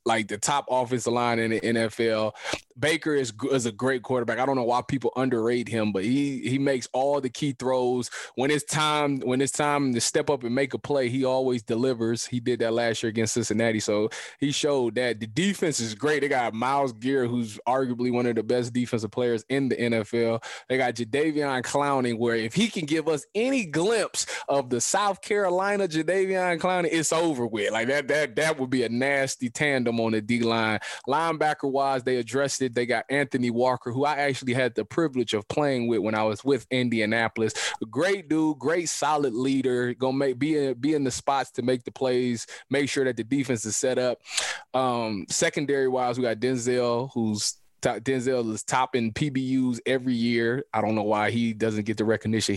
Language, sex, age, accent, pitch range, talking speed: English, male, 20-39, American, 115-140 Hz, 205 wpm